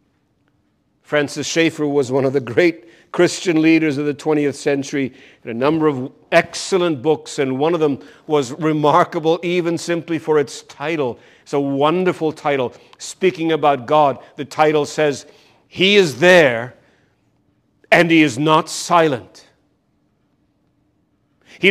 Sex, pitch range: male, 150-185 Hz